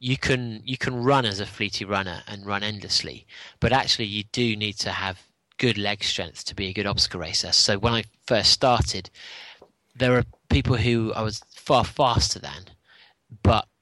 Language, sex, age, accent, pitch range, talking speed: English, male, 30-49, British, 100-125 Hz, 185 wpm